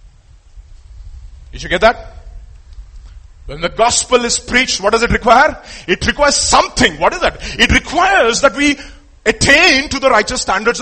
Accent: Indian